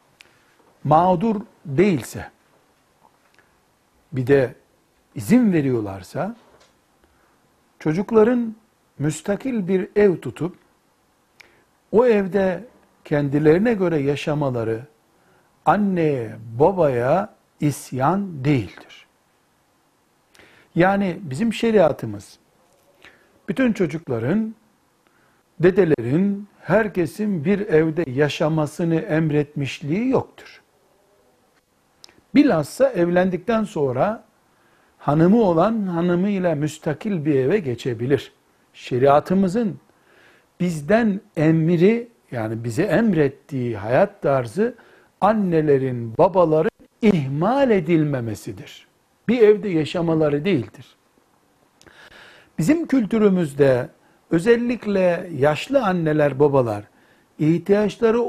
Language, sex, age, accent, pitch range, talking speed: Turkish, male, 60-79, native, 145-205 Hz, 70 wpm